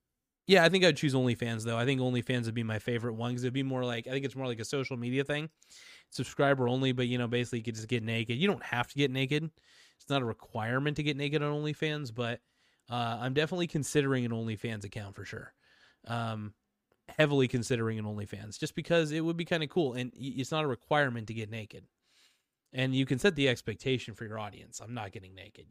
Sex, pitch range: male, 120-145 Hz